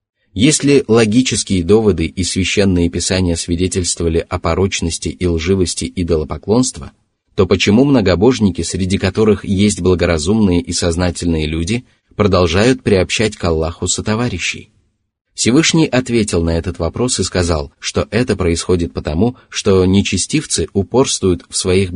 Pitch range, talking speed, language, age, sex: 85-110 Hz, 125 wpm, Russian, 30-49, male